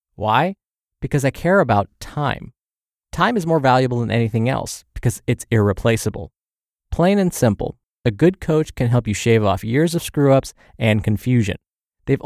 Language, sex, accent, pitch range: English, male, American, 110-150 Hz